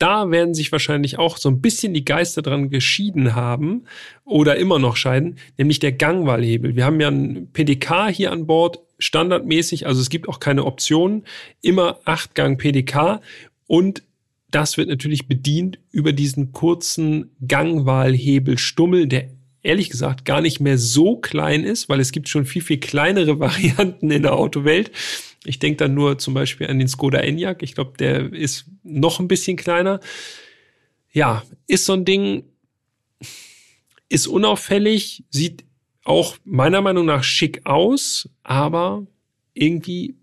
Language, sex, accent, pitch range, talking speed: German, male, German, 135-170 Hz, 150 wpm